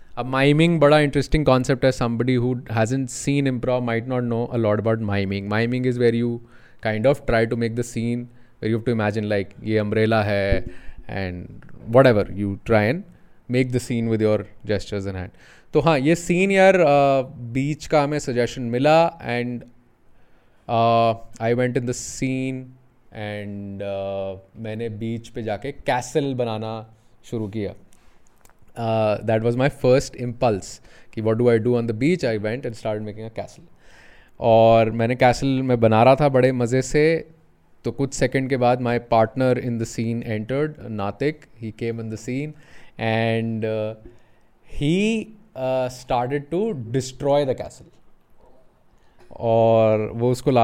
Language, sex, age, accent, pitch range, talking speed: English, male, 20-39, Indian, 110-130 Hz, 160 wpm